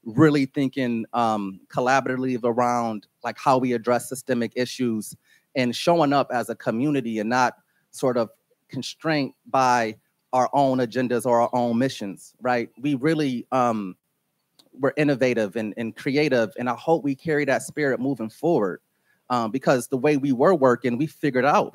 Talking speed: 160 wpm